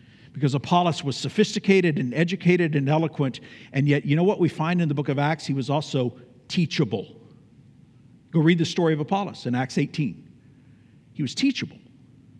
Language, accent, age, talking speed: English, American, 50-69, 175 wpm